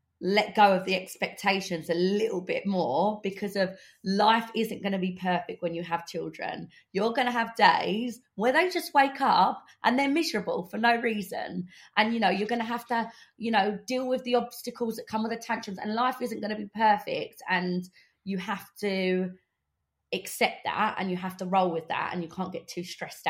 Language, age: English, 20-39